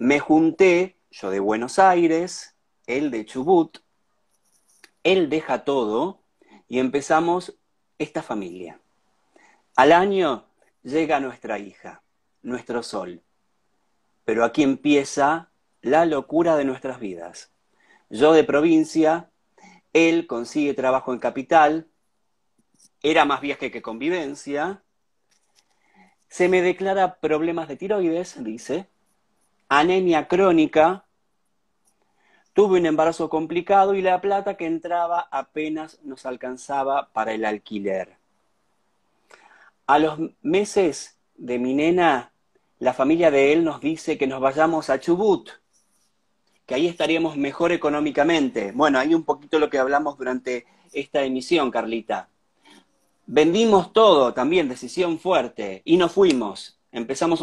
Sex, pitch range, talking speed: male, 130-175 Hz, 115 wpm